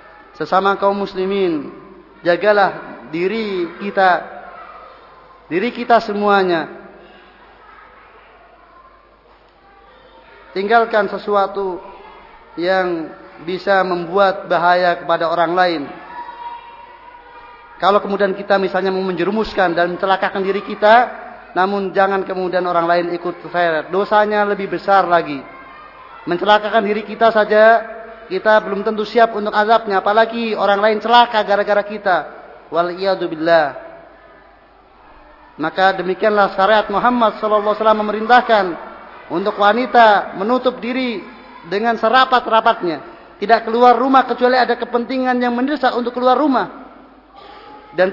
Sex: male